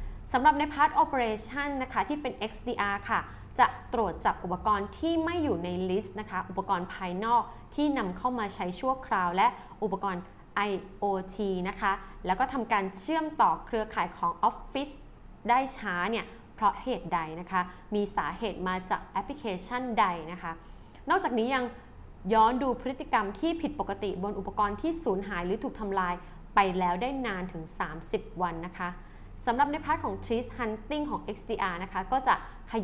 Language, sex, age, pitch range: Thai, female, 20-39, 185-245 Hz